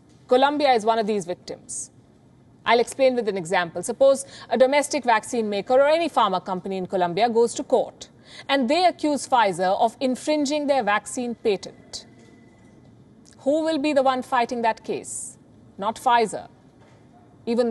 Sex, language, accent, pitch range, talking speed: female, English, Indian, 215-280 Hz, 155 wpm